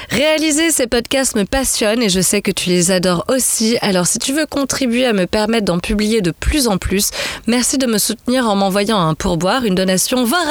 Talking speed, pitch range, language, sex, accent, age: 215 wpm, 205-255 Hz, French, female, French, 30-49